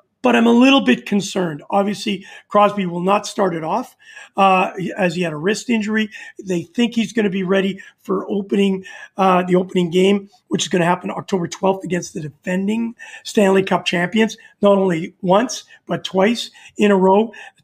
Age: 40-59